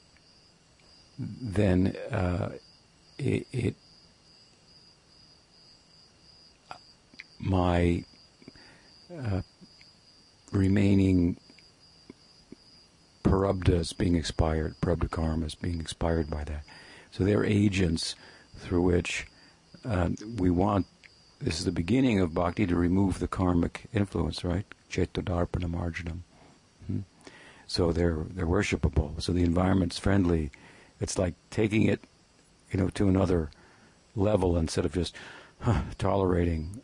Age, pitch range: 60-79, 85-100 Hz